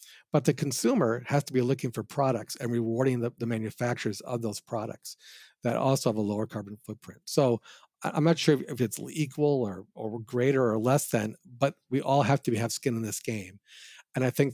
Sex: male